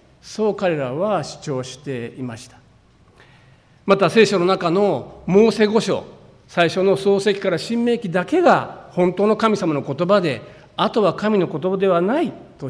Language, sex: Japanese, male